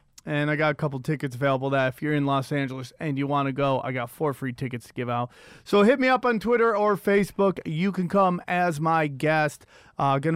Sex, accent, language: male, American, English